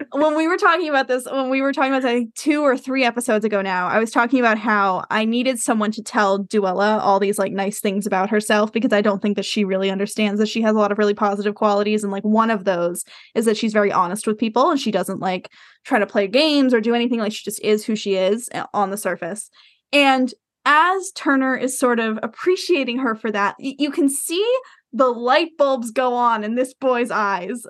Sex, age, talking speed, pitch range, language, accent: female, 10-29, 240 wpm, 215-320 Hz, English, American